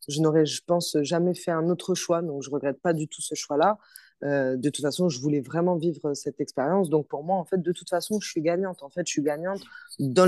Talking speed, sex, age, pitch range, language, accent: 265 wpm, female, 20-39, 145-180 Hz, French, French